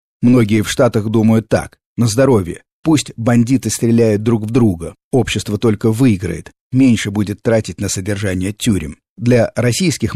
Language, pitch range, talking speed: Russian, 100-120 Hz, 140 wpm